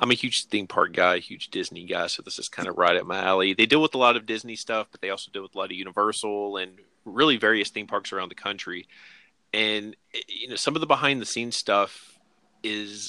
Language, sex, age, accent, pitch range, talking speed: English, male, 30-49, American, 105-125 Hz, 250 wpm